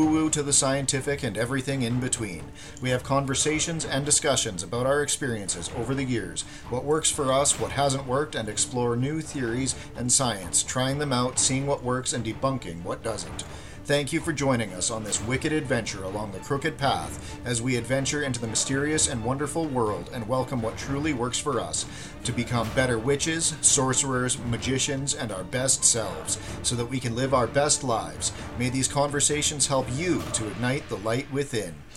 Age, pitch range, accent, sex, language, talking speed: 40-59, 115-140 Hz, American, male, English, 190 wpm